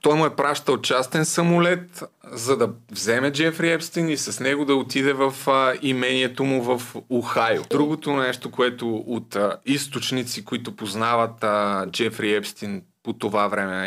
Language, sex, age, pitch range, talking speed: Bulgarian, male, 30-49, 125-155 Hz, 145 wpm